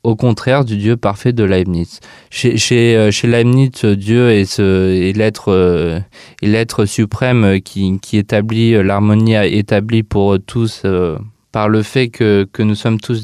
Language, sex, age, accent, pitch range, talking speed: French, male, 20-39, French, 100-120 Hz, 160 wpm